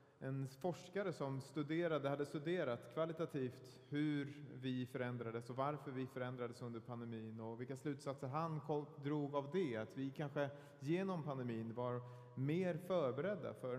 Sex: male